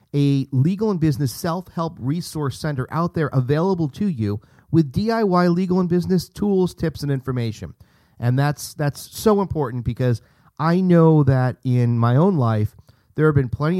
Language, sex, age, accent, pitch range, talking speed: English, male, 40-59, American, 115-155 Hz, 165 wpm